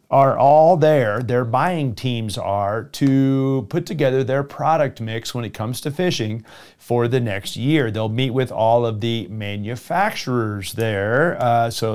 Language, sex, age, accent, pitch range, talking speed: English, male, 30-49, American, 110-145 Hz, 160 wpm